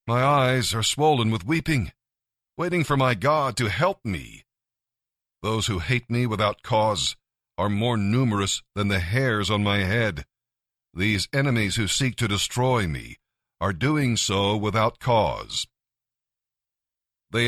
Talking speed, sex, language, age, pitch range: 140 wpm, male, English, 50-69, 100-130 Hz